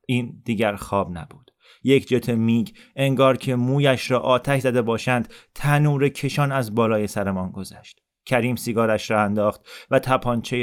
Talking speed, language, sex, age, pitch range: 145 wpm, Persian, male, 30-49, 110-135 Hz